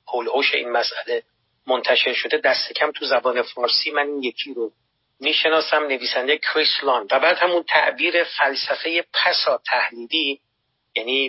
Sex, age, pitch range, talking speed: male, 40-59, 125-155 Hz, 140 wpm